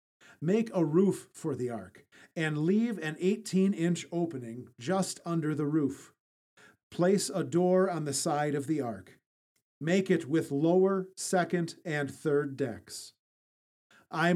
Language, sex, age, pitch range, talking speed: English, male, 40-59, 145-185 Hz, 140 wpm